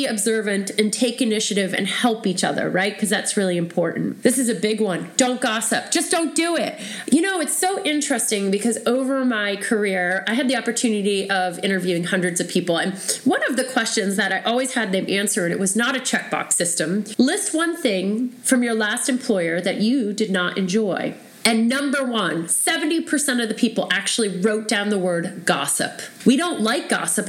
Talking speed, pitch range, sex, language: 195 wpm, 205-285 Hz, female, English